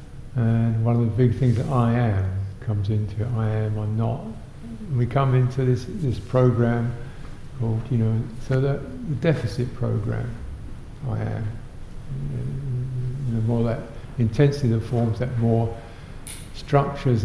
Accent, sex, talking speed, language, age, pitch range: British, male, 140 wpm, English, 60-79, 115-135 Hz